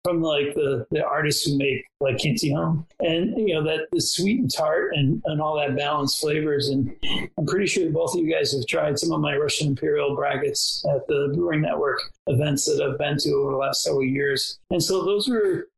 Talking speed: 220 wpm